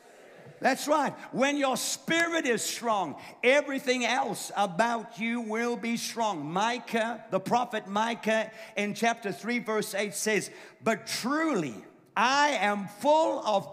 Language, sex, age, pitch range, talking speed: English, male, 50-69, 215-270 Hz, 130 wpm